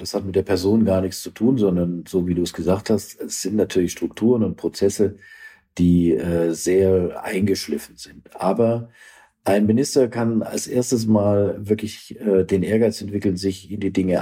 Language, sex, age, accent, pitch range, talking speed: German, male, 50-69, German, 95-110 Hz, 180 wpm